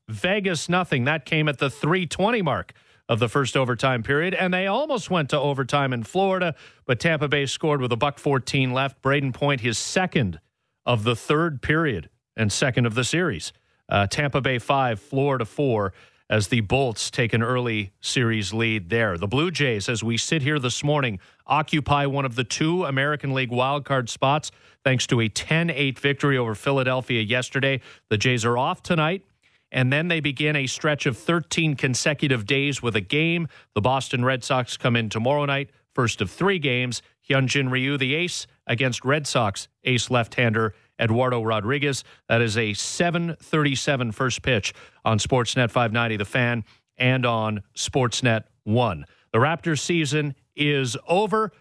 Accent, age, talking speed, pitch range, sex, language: American, 40-59, 170 wpm, 115-150 Hz, male, English